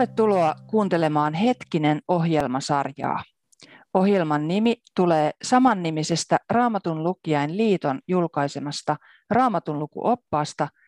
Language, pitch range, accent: Finnish, 150-215 Hz, native